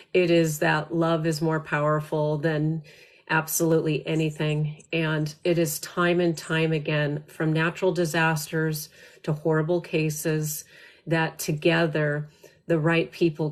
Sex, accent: female, American